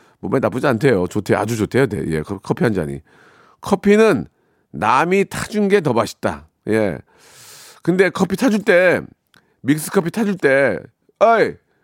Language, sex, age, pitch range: Korean, male, 40-59, 130-195 Hz